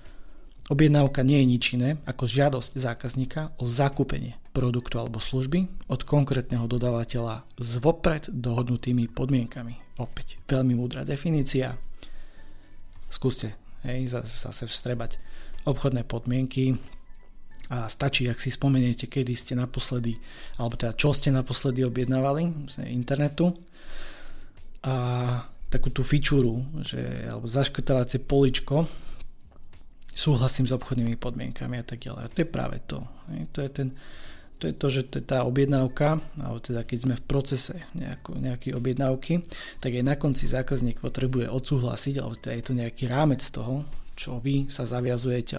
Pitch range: 120-140 Hz